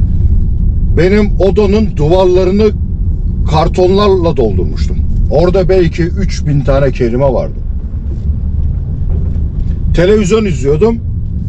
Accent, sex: native, male